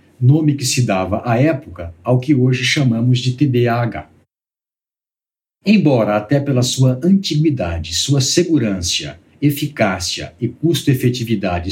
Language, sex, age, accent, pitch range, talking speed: Portuguese, male, 60-79, Brazilian, 100-130 Hz, 115 wpm